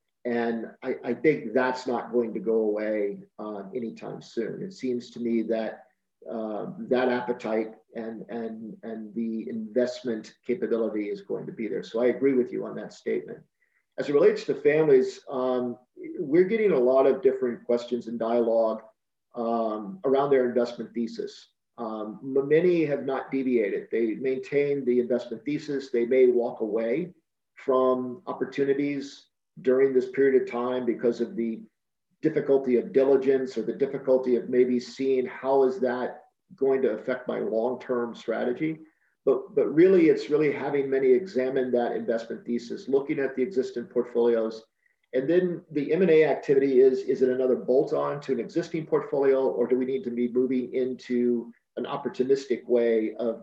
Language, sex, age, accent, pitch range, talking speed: English, male, 40-59, American, 115-140 Hz, 160 wpm